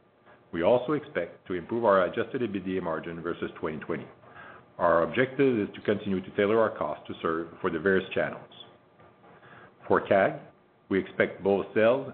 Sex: male